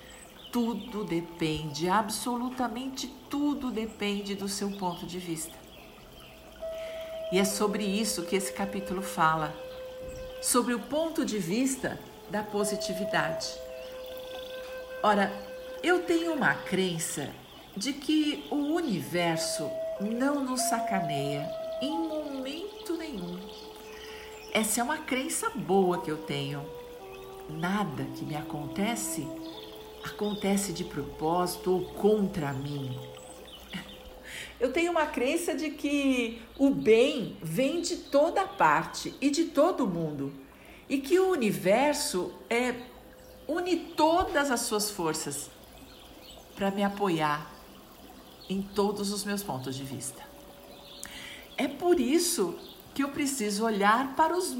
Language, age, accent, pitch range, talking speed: Portuguese, 50-69, Brazilian, 175-290 Hz, 115 wpm